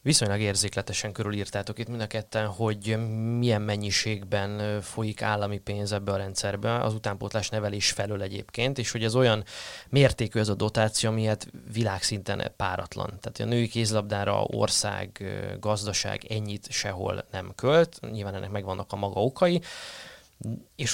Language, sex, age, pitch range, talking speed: Hungarian, male, 20-39, 105-120 Hz, 140 wpm